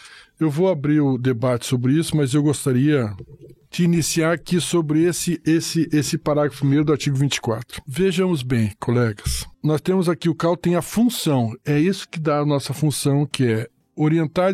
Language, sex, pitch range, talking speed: Portuguese, male, 135-170 Hz, 180 wpm